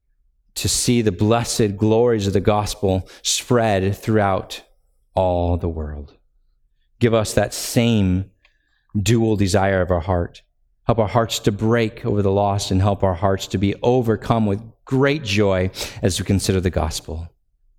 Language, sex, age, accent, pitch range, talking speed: English, male, 40-59, American, 95-125 Hz, 150 wpm